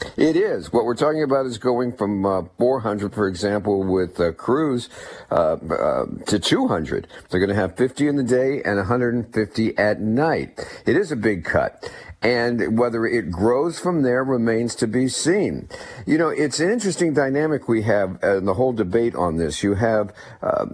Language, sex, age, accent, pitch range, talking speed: English, male, 50-69, American, 105-130 Hz, 185 wpm